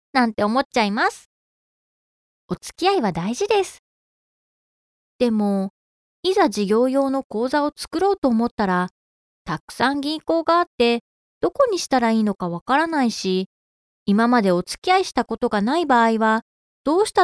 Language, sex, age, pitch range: Japanese, female, 20-39, 220-335 Hz